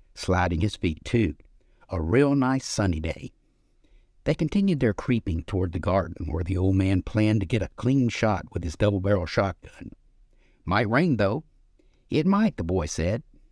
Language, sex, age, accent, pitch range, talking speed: English, male, 60-79, American, 90-125 Hz, 170 wpm